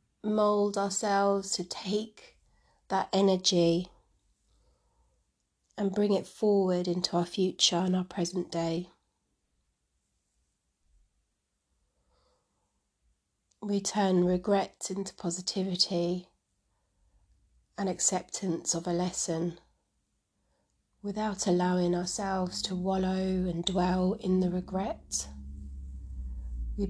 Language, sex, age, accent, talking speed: English, female, 30-49, British, 85 wpm